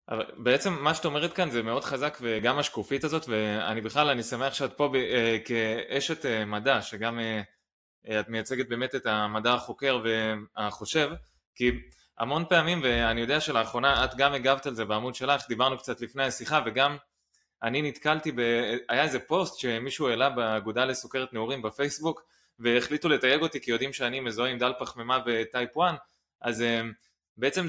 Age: 20-39